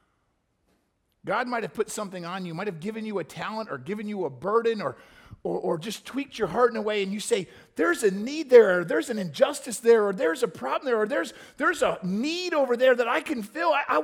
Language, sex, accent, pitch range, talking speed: English, male, American, 180-275 Hz, 250 wpm